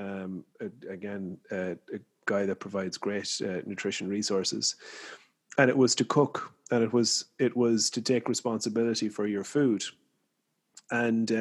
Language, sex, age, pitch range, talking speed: English, male, 30-49, 105-125 Hz, 145 wpm